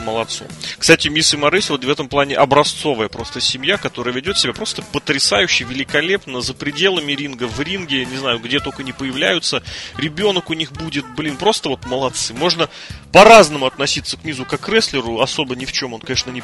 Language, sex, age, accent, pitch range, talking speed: Russian, male, 30-49, native, 120-155 Hz, 190 wpm